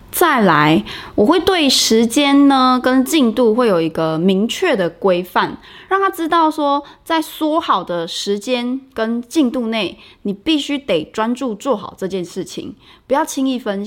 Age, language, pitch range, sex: 20-39, Chinese, 185-260 Hz, female